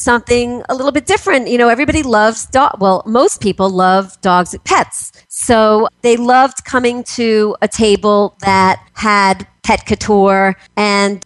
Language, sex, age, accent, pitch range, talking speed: English, female, 40-59, American, 195-250 Hz, 155 wpm